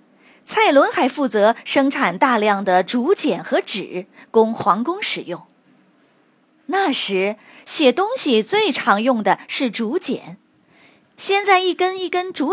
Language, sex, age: Chinese, female, 20-39